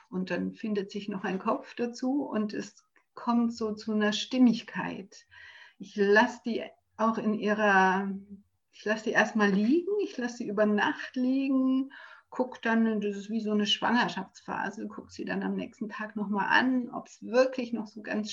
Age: 60-79